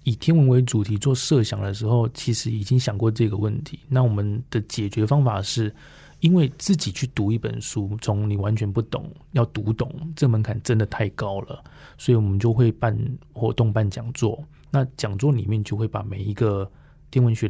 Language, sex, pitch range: Chinese, male, 105-125 Hz